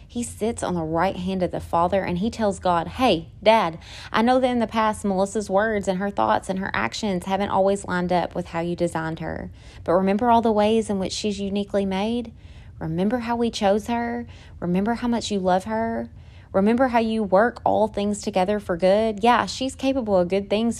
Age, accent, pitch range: 20-39, American, 165-205 Hz